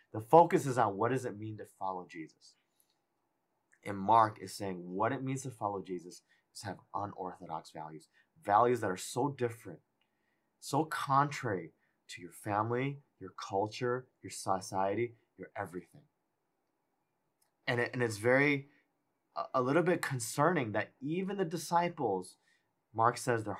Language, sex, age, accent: English, male, 30-49, American